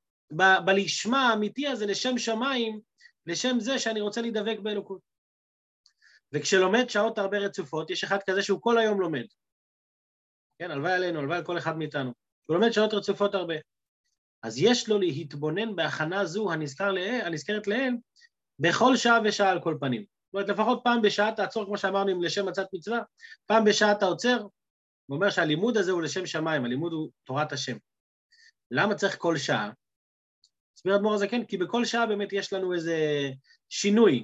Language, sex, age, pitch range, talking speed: Hebrew, male, 30-49, 160-225 Hz, 160 wpm